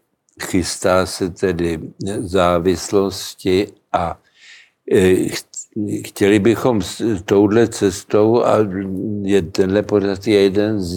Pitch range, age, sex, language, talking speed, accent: 90-100 Hz, 60-79, male, Czech, 95 wpm, native